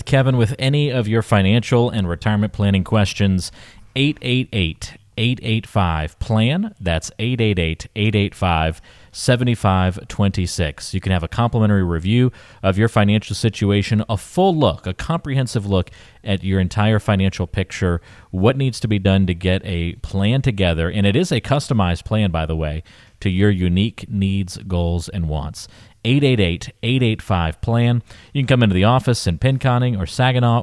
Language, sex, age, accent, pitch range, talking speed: English, male, 40-59, American, 90-115 Hz, 140 wpm